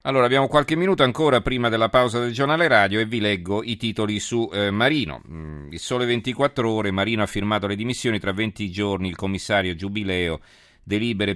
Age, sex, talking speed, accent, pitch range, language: 40-59, male, 185 wpm, native, 90-115 Hz, Italian